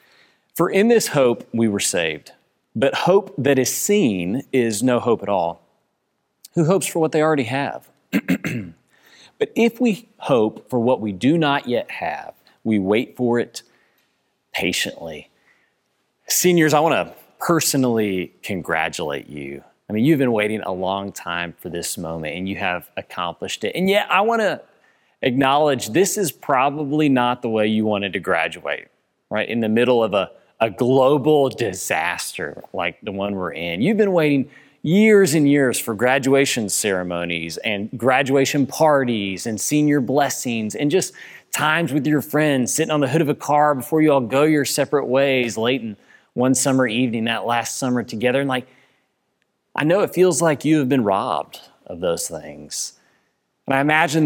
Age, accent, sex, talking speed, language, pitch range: 30-49, American, male, 170 wpm, English, 115-150 Hz